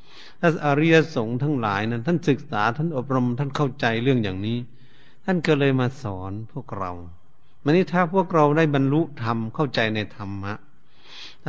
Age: 60-79